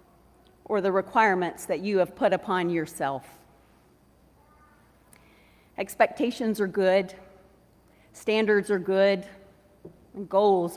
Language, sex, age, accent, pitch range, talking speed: English, female, 40-59, American, 185-230 Hz, 90 wpm